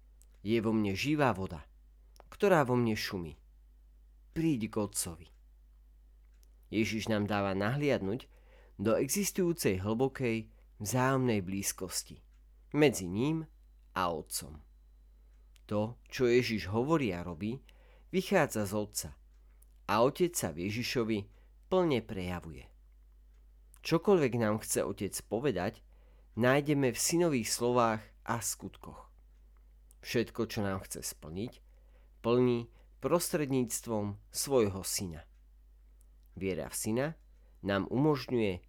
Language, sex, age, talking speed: Slovak, male, 40-59, 100 wpm